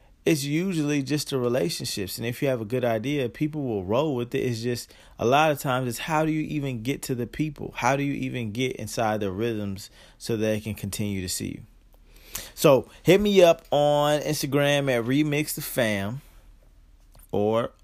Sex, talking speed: male, 195 wpm